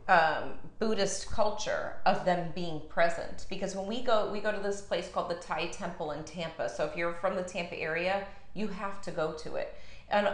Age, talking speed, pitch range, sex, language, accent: 30-49, 210 wpm, 165-200 Hz, female, English, American